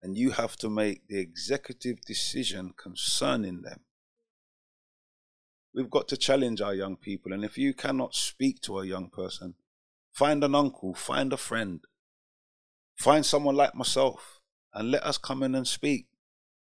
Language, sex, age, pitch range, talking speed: English, male, 30-49, 95-130 Hz, 155 wpm